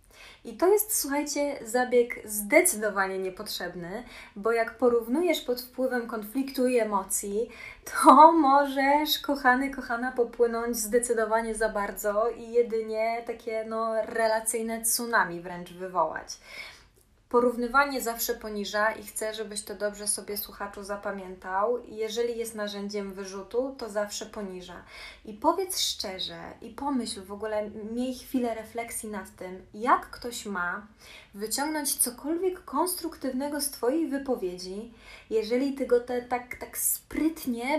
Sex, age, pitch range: female, 20-39, 205-255 Hz